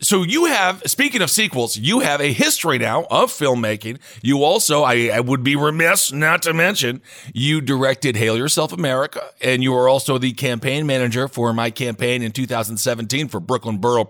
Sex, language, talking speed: male, English, 185 wpm